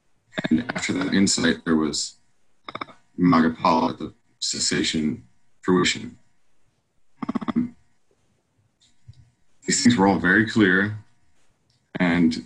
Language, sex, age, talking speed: English, male, 40-59, 90 wpm